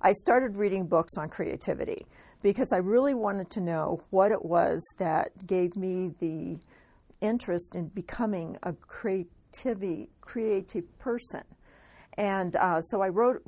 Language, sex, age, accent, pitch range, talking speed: English, female, 40-59, American, 175-195 Hz, 140 wpm